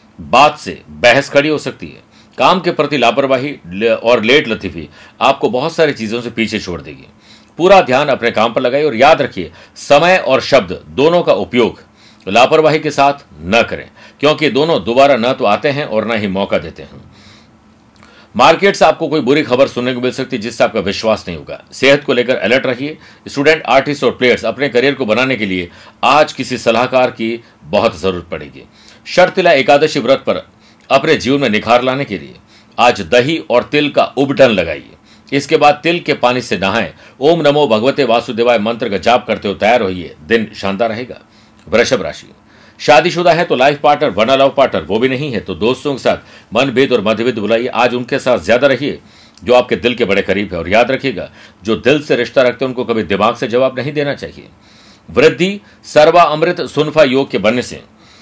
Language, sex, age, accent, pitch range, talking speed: Hindi, male, 50-69, native, 110-145 Hz, 170 wpm